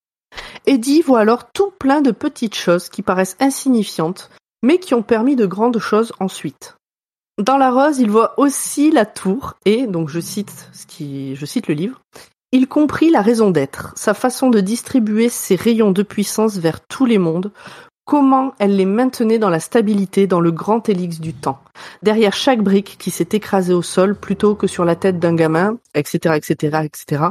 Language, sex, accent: French, female, French